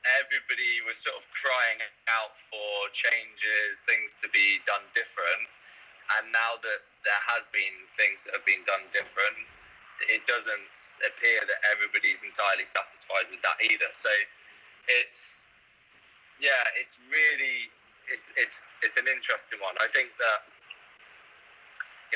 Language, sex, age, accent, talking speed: English, male, 20-39, British, 135 wpm